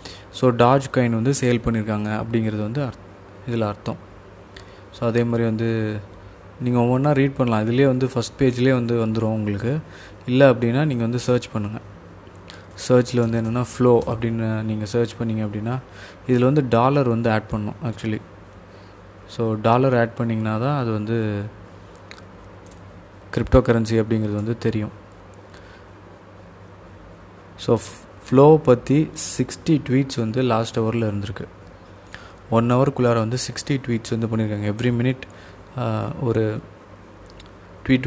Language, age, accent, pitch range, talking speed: Tamil, 20-39, native, 100-120 Hz, 125 wpm